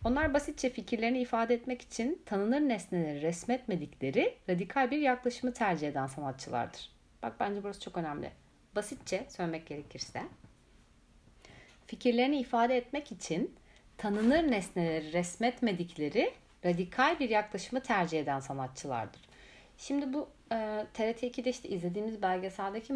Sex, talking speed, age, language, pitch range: female, 110 wpm, 30-49, Turkish, 160-235 Hz